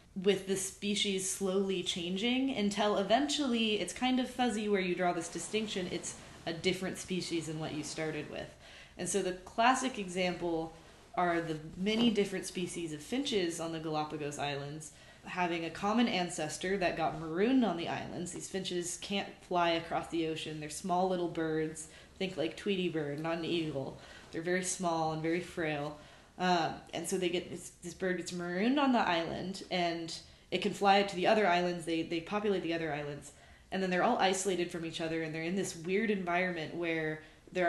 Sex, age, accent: female, 20-39, American